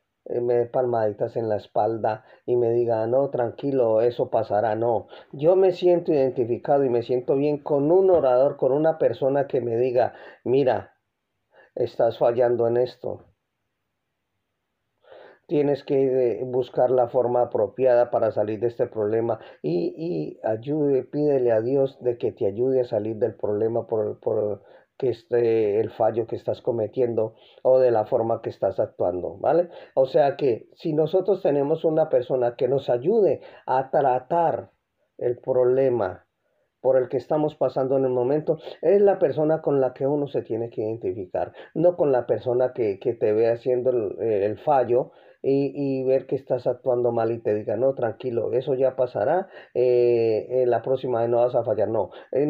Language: Spanish